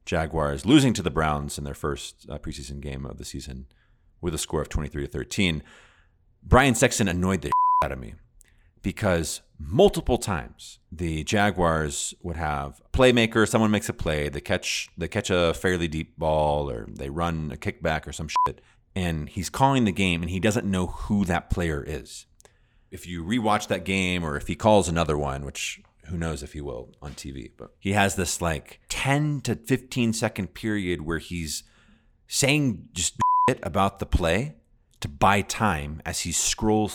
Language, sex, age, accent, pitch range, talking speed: English, male, 30-49, American, 80-115 Hz, 180 wpm